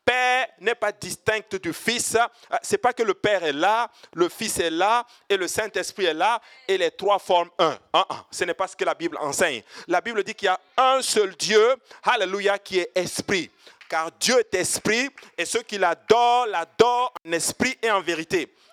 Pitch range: 195-320 Hz